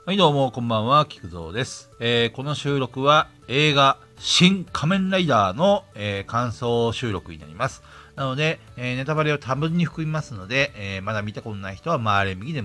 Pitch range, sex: 100-150 Hz, male